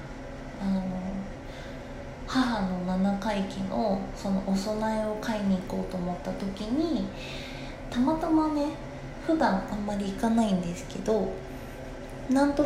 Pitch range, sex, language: 190-255 Hz, female, Japanese